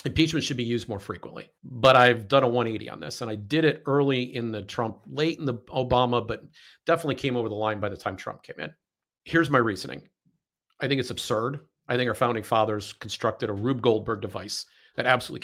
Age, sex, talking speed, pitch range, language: 50-69, male, 220 wpm, 115-145 Hz, English